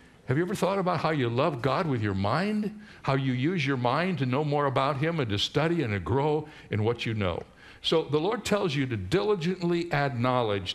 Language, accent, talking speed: English, American, 230 wpm